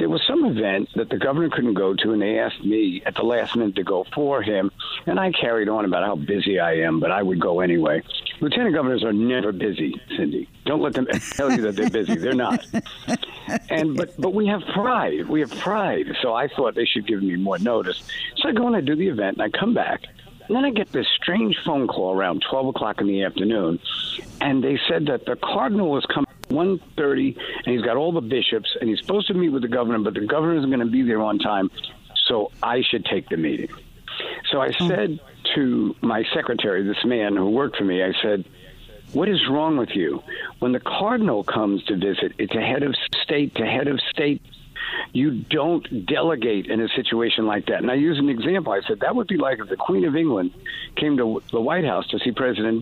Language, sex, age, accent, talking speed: English, male, 60-79, American, 230 wpm